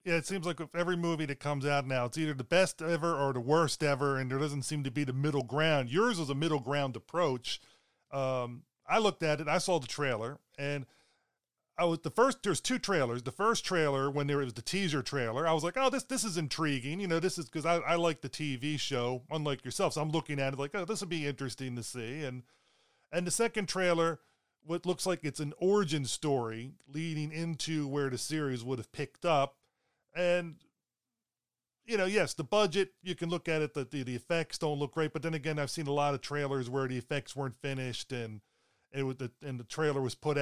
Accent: American